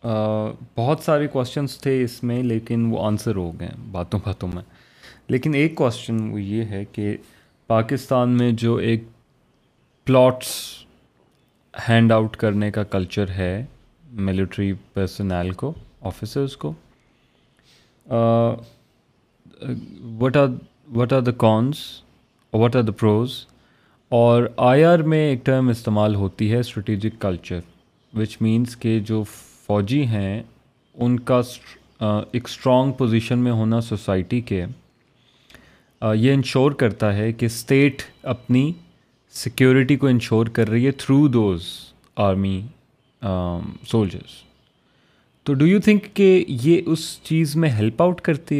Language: Urdu